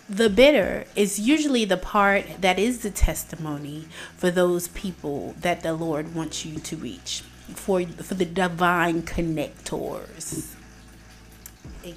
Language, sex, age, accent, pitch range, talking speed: English, female, 30-49, American, 160-205 Hz, 130 wpm